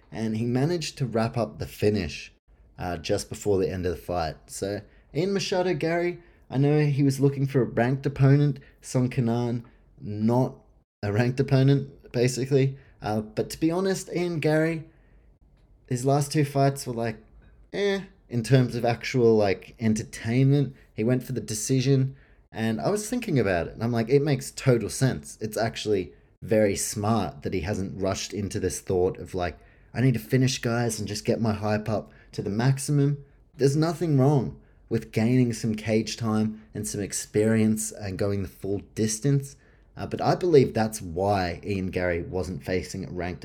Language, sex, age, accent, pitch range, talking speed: English, male, 20-39, Australian, 105-140 Hz, 180 wpm